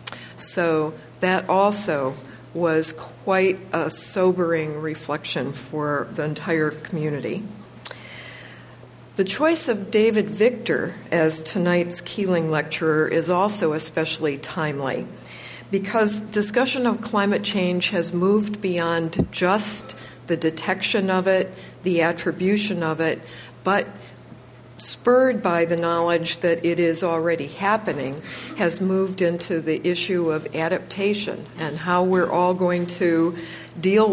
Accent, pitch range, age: American, 160-190 Hz, 60-79